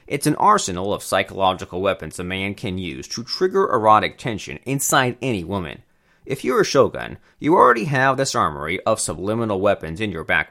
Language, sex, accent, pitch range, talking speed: English, male, American, 95-155 Hz, 185 wpm